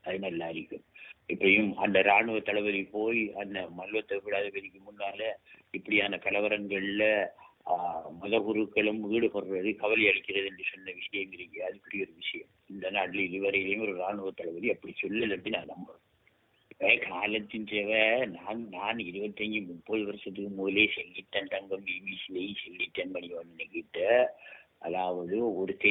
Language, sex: English, male